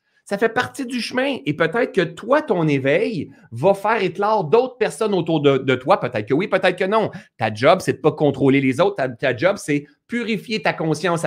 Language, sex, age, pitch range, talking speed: French, male, 30-49, 115-170 Hz, 225 wpm